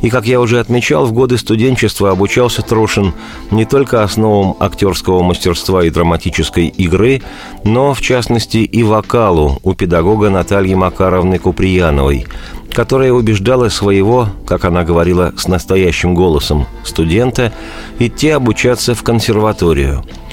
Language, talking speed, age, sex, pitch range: Russian, 125 wpm, 50-69, male, 90-115 Hz